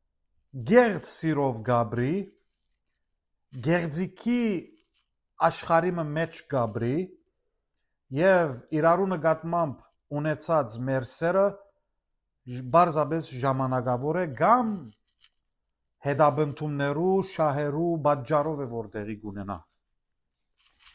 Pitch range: 130-180 Hz